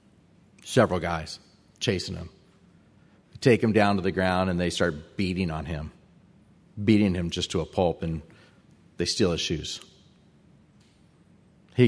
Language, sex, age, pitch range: English, male, 40-59, 90-120 Hz